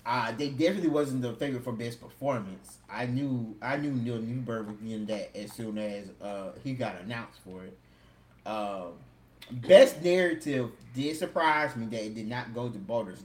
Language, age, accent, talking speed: English, 20-39, American, 185 wpm